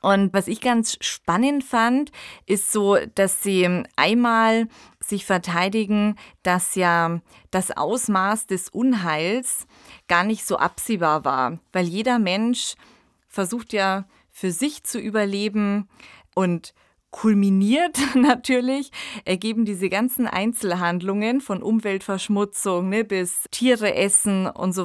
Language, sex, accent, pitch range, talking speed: German, female, German, 185-230 Hz, 115 wpm